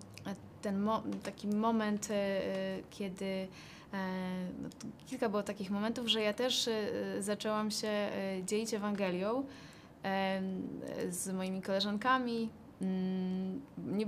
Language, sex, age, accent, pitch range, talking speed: Polish, female, 20-39, native, 195-235 Hz, 85 wpm